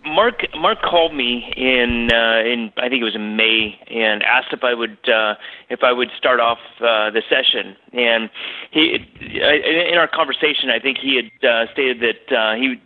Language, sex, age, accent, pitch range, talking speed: English, male, 30-49, American, 110-130 Hz, 190 wpm